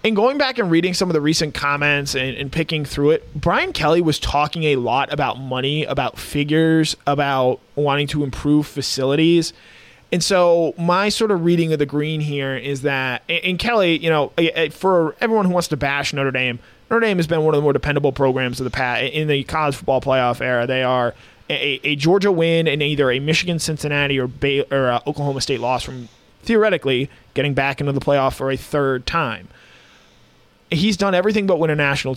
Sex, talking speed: male, 200 wpm